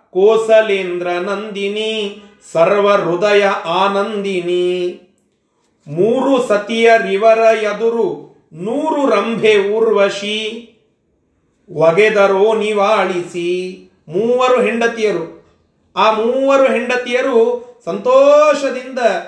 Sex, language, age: male, Kannada, 40-59